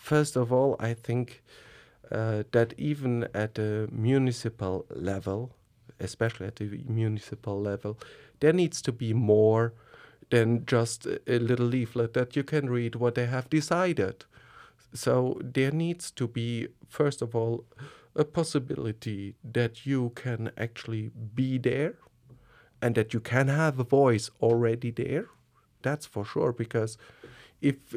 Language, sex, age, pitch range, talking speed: English, male, 50-69, 115-145 Hz, 140 wpm